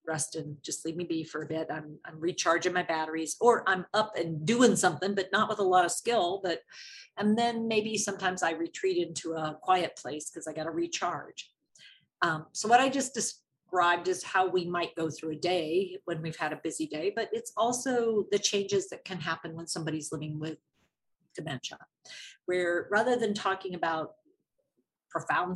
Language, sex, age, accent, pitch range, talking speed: English, female, 50-69, American, 165-215 Hz, 195 wpm